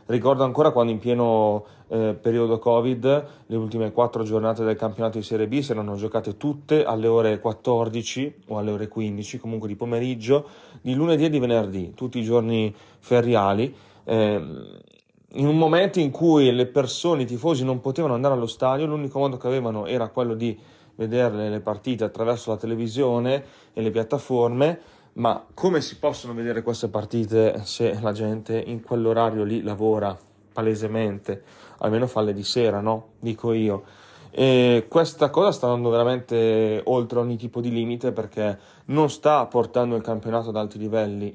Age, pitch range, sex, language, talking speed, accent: 30-49, 110-125 Hz, male, Italian, 165 wpm, native